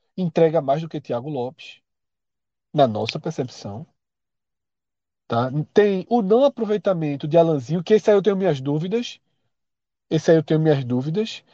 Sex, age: male, 40-59